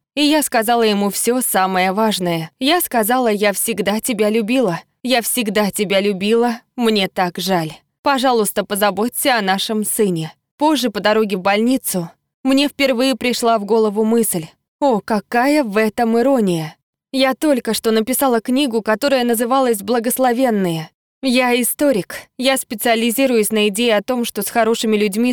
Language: Russian